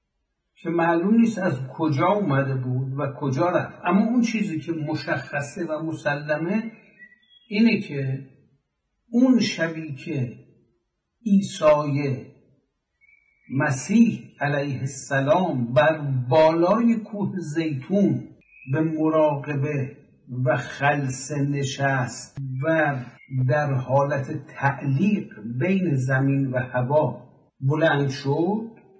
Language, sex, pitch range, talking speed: Persian, male, 135-185 Hz, 95 wpm